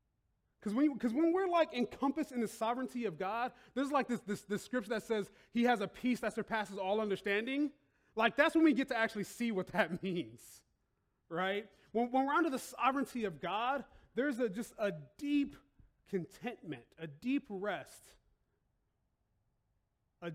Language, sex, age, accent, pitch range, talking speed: English, male, 30-49, American, 200-280 Hz, 170 wpm